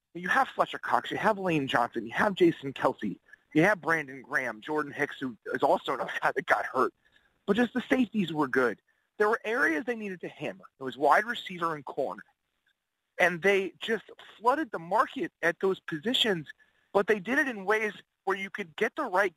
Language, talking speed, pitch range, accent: English, 205 wpm, 170-235 Hz, American